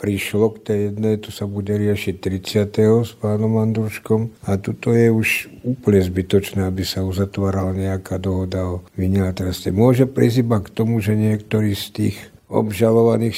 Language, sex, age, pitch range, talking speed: Slovak, male, 60-79, 100-110 Hz, 150 wpm